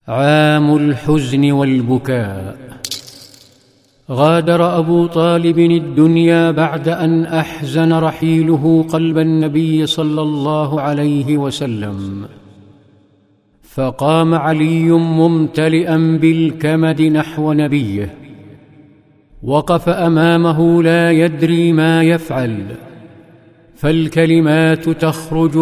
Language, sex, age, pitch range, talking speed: Arabic, male, 50-69, 145-165 Hz, 75 wpm